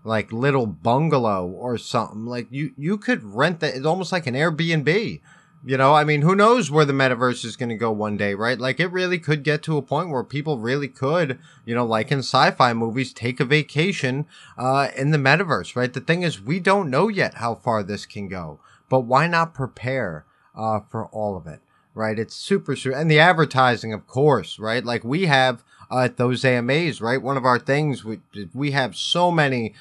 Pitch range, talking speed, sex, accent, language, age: 110-150 Hz, 215 wpm, male, American, English, 30-49